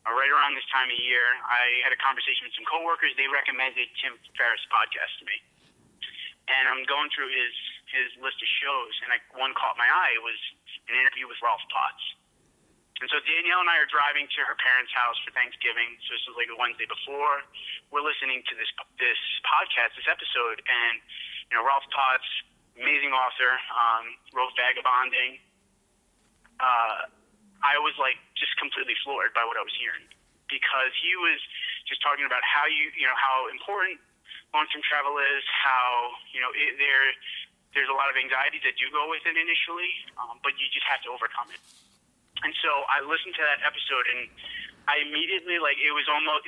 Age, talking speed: 30-49, 185 wpm